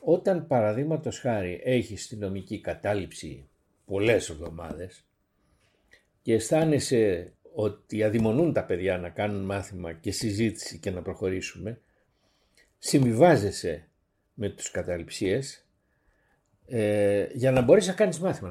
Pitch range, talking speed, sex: 100-165 Hz, 110 wpm, male